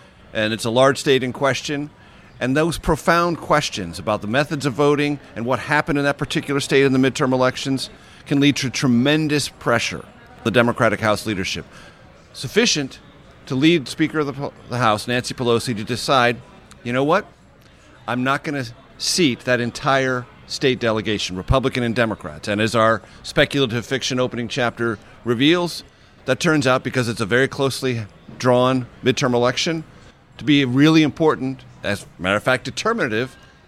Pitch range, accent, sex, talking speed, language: 120-140 Hz, American, male, 165 wpm, English